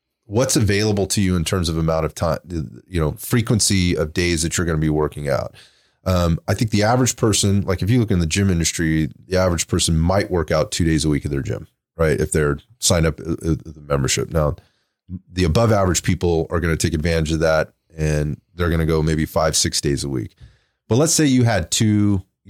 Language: English